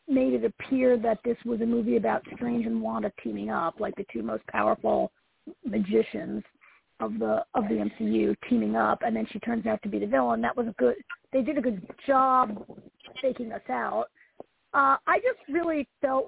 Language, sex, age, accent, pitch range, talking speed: English, female, 40-59, American, 225-290 Hz, 195 wpm